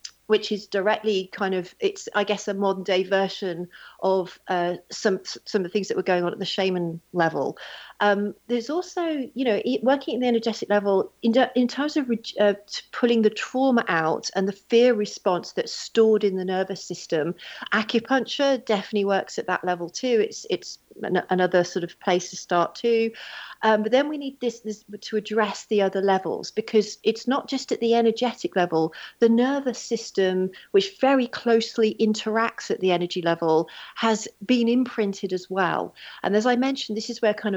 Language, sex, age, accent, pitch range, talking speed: English, female, 40-59, British, 190-235 Hz, 185 wpm